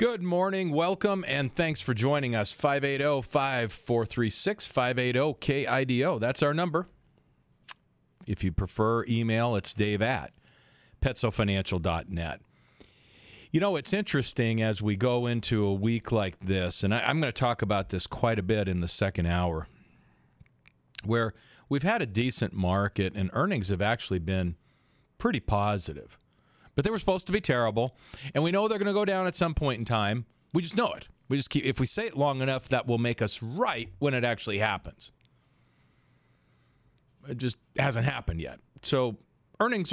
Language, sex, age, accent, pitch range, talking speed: English, male, 40-59, American, 105-145 Hz, 160 wpm